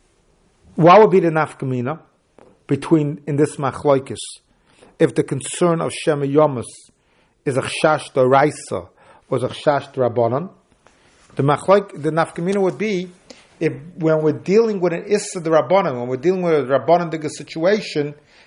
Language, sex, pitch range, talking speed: English, male, 135-180 Hz, 140 wpm